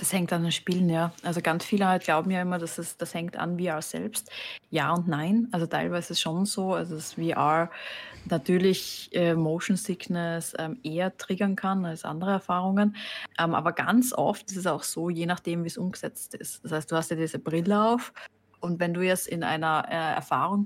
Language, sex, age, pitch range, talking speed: German, female, 20-39, 165-195 Hz, 205 wpm